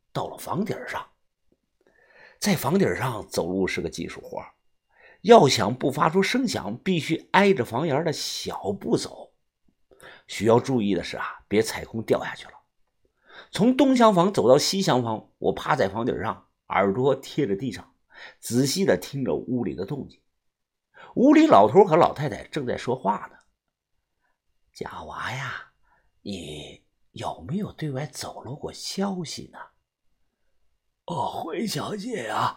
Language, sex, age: Chinese, male, 50-69